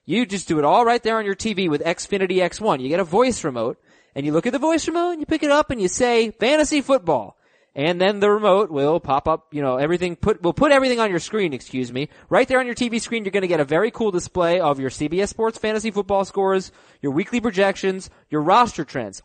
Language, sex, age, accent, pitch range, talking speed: English, male, 20-39, American, 165-225 Hz, 255 wpm